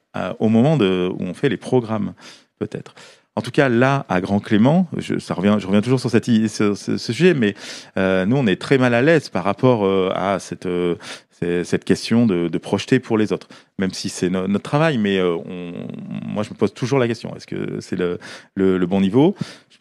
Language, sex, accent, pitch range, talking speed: French, male, French, 95-125 Hz, 235 wpm